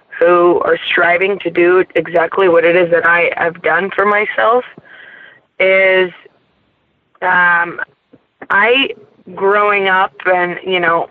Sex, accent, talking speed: female, American, 125 wpm